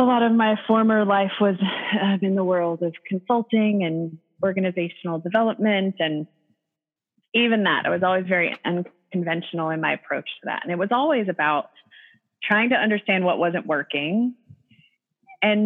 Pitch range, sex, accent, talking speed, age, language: 175-225 Hz, female, American, 155 wpm, 30-49, English